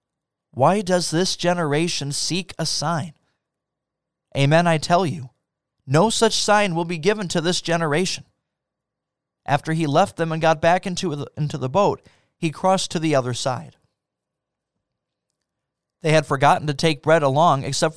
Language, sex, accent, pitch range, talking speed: English, male, American, 145-185 Hz, 145 wpm